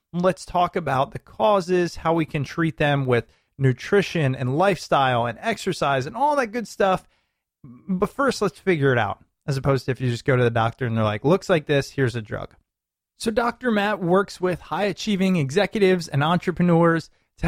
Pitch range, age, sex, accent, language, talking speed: 140-195 Hz, 30-49, male, American, English, 190 wpm